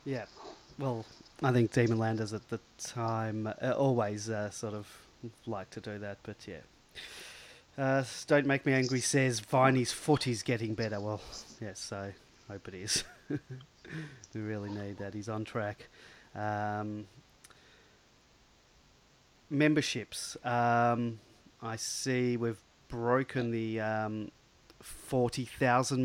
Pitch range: 110-125 Hz